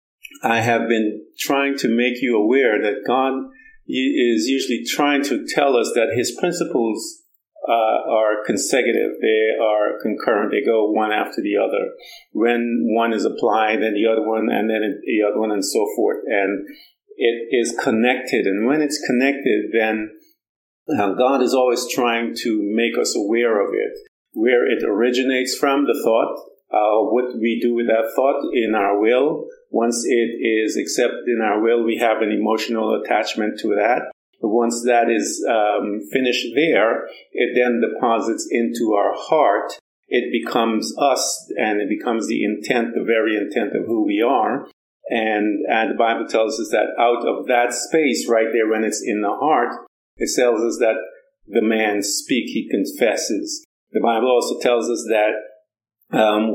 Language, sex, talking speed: English, male, 170 wpm